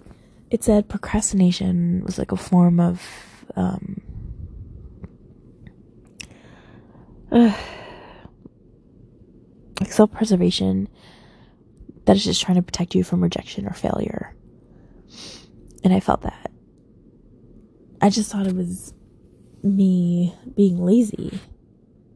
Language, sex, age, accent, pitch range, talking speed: English, female, 20-39, American, 180-205 Hz, 90 wpm